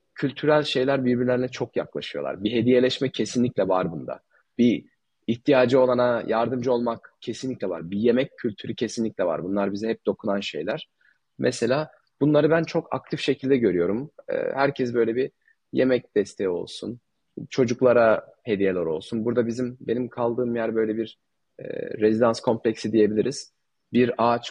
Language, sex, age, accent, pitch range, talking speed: Turkish, male, 30-49, native, 110-130 Hz, 135 wpm